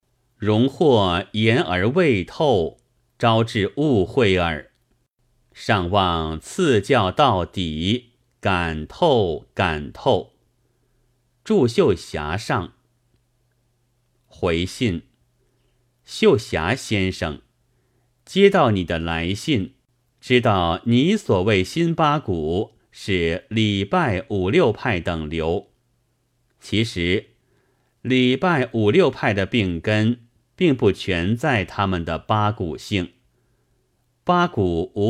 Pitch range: 95-125 Hz